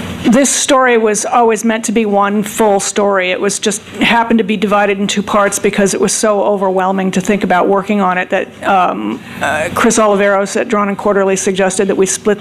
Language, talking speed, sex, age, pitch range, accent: English, 210 wpm, female, 40-59, 195-235 Hz, American